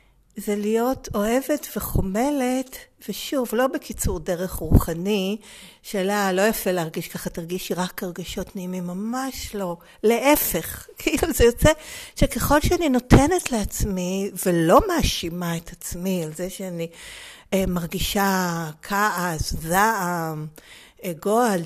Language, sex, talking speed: Hebrew, female, 110 wpm